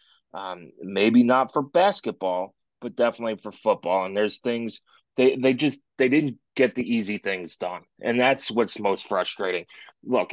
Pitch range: 105-125 Hz